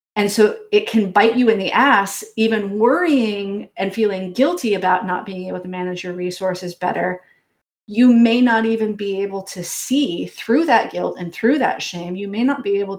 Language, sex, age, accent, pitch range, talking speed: English, female, 30-49, American, 185-225 Hz, 200 wpm